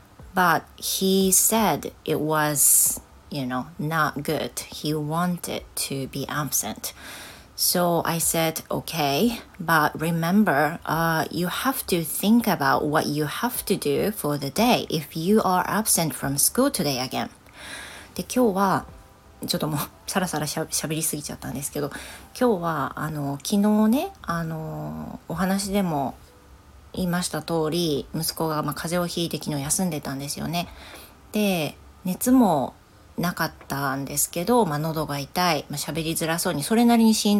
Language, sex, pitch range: Japanese, female, 145-190 Hz